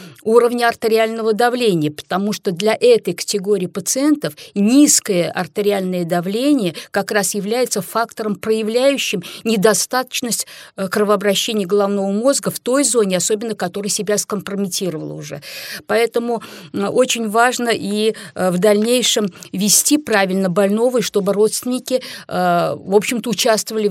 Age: 50-69